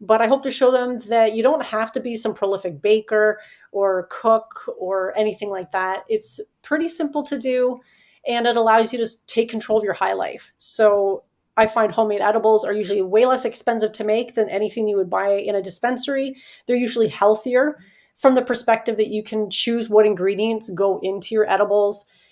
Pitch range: 205-235 Hz